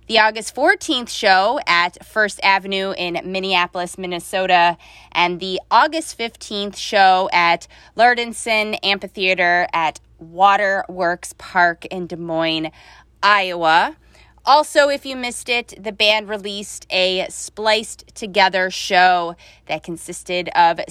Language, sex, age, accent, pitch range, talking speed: English, female, 20-39, American, 175-220 Hz, 115 wpm